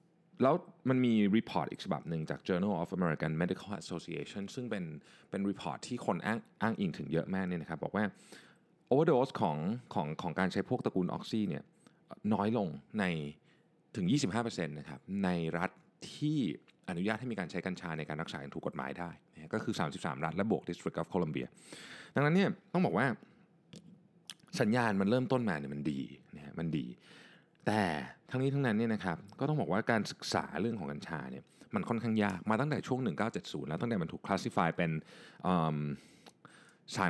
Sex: male